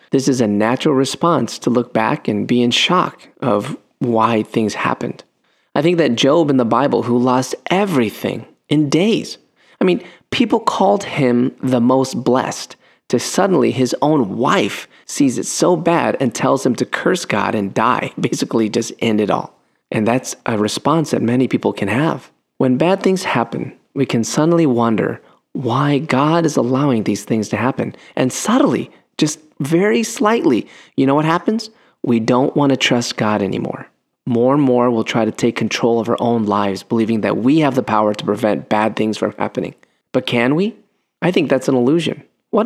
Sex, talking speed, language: male, 185 wpm, English